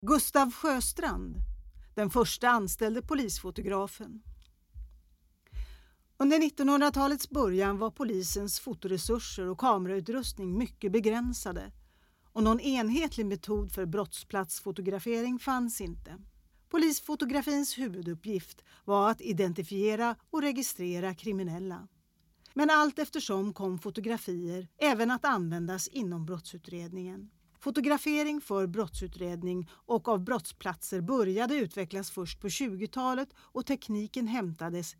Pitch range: 185-255 Hz